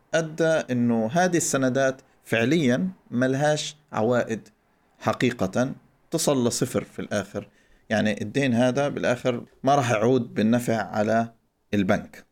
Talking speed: 110 wpm